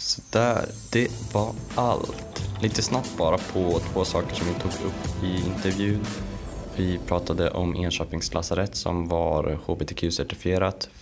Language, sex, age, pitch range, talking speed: Swedish, male, 20-39, 85-105 Hz, 130 wpm